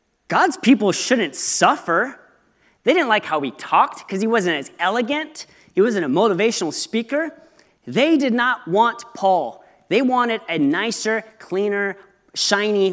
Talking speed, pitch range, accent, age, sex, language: 145 wpm, 195-280 Hz, American, 30-49, male, English